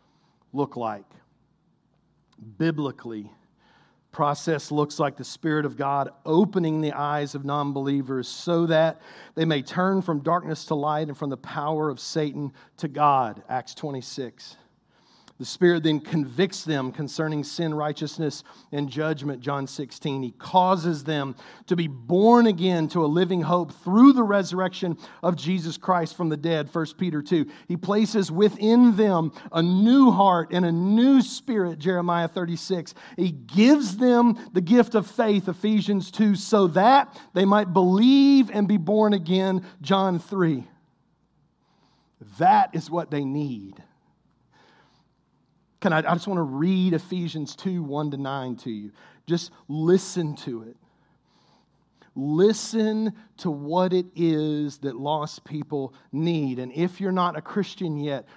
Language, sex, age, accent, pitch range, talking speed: English, male, 50-69, American, 150-190 Hz, 145 wpm